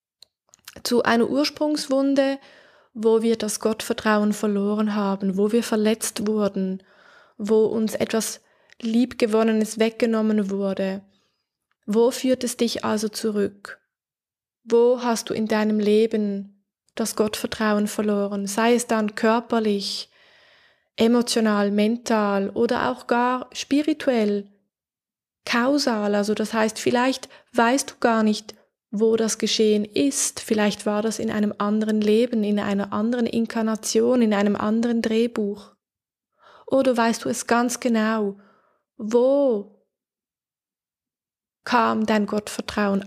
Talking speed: 115 wpm